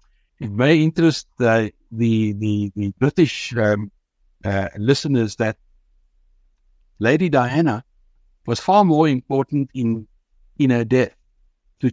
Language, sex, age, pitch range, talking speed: English, male, 60-79, 115-145 Hz, 115 wpm